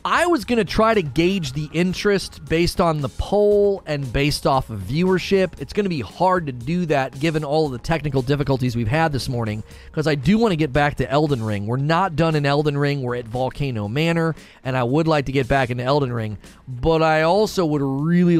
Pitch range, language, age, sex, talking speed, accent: 130-175 Hz, English, 30-49, male, 230 wpm, American